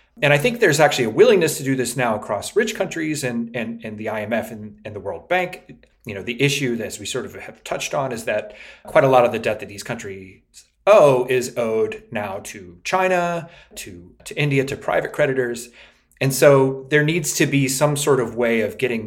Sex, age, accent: male, 30-49, American